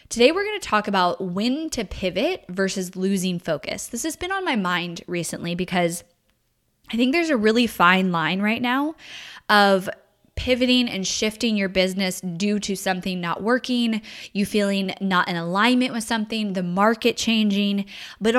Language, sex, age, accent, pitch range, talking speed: English, female, 10-29, American, 180-225 Hz, 165 wpm